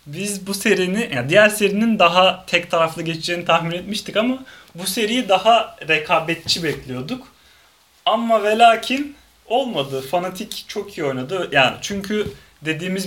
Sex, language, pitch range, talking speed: male, Turkish, 150-195 Hz, 130 wpm